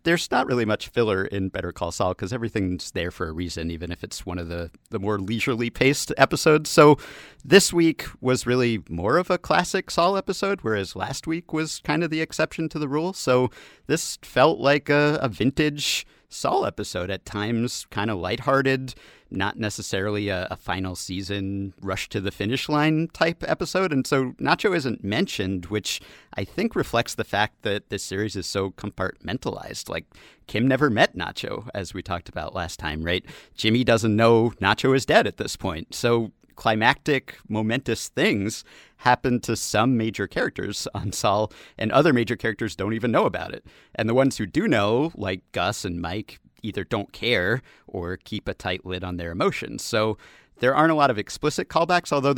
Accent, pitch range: American, 95-145 Hz